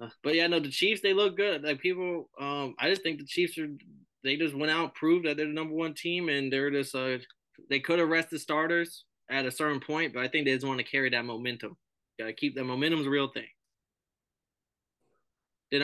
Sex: male